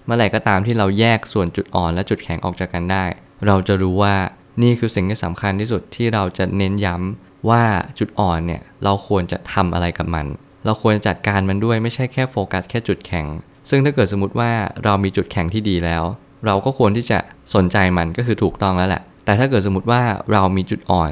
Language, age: Thai, 20-39